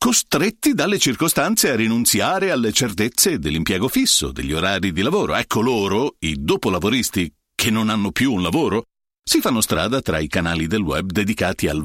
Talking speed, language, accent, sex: 165 wpm, Italian, native, male